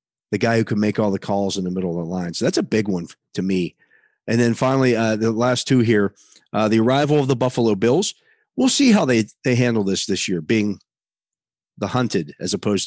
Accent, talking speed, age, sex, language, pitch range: American, 235 wpm, 40-59, male, English, 110-140 Hz